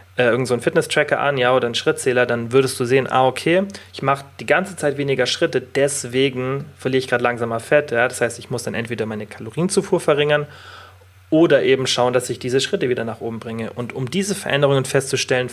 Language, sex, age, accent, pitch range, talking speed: German, male, 30-49, German, 115-140 Hz, 205 wpm